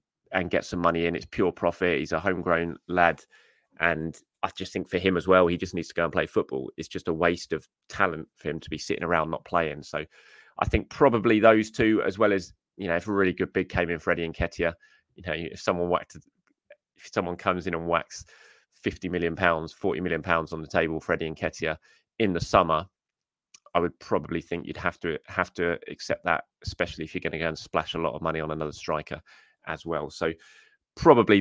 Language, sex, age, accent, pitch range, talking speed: English, male, 20-39, British, 85-110 Hz, 225 wpm